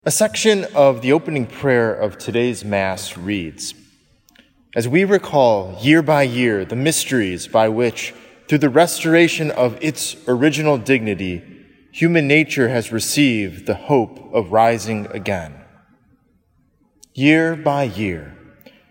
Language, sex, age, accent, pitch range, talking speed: English, male, 20-39, American, 110-160 Hz, 125 wpm